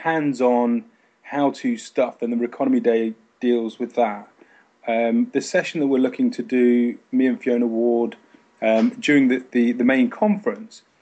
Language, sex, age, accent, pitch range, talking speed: English, male, 30-49, British, 120-175 Hz, 160 wpm